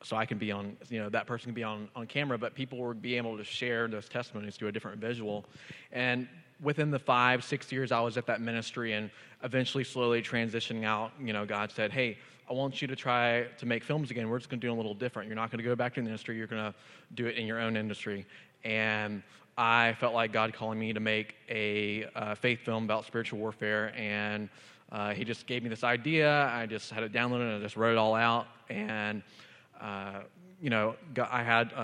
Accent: American